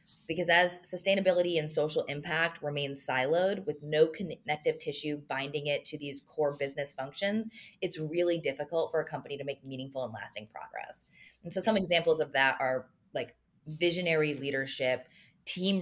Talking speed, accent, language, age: 160 wpm, American, English, 20-39